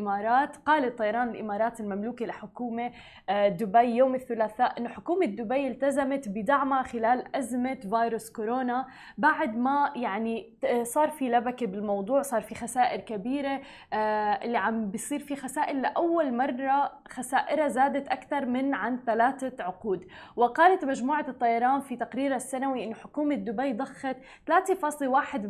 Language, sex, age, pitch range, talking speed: Arabic, female, 20-39, 225-275 Hz, 125 wpm